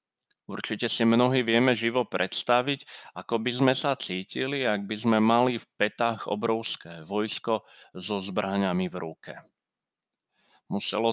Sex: male